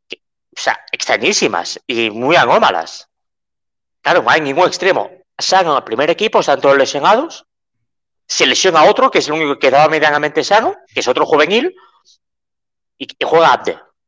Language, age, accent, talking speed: Spanish, 30-49, Spanish, 160 wpm